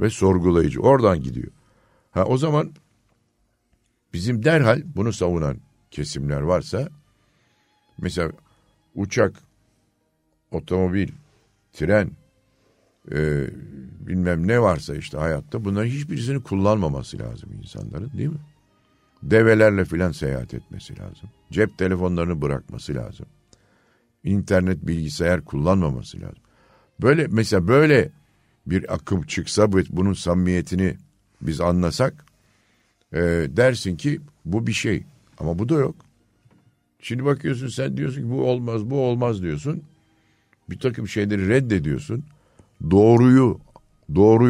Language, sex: Turkish, male